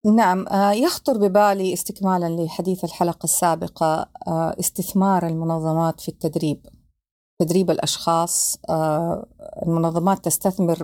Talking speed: 85 wpm